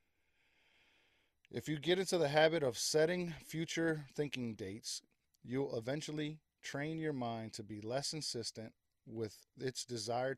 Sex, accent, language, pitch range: male, American, English, 100-125 Hz